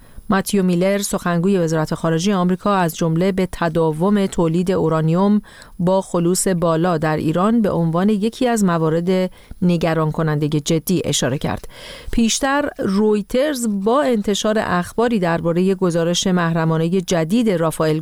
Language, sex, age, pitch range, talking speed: Persian, female, 40-59, 165-210 Hz, 125 wpm